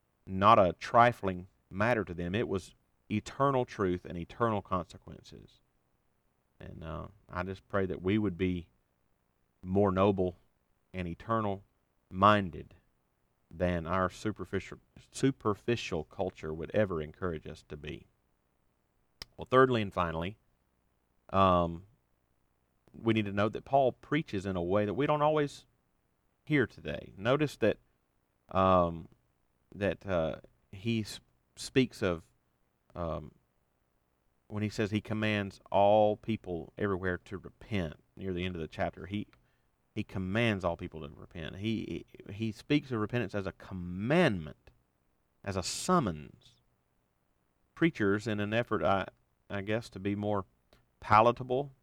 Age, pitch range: 40-59, 85-110 Hz